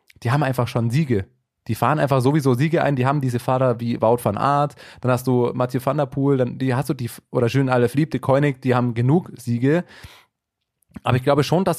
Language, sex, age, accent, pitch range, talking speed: German, male, 20-39, German, 120-150 Hz, 215 wpm